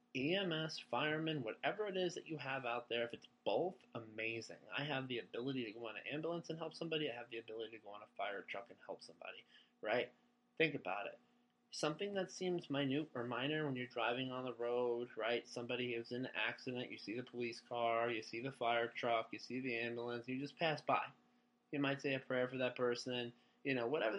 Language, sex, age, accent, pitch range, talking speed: English, male, 20-39, American, 120-160 Hz, 225 wpm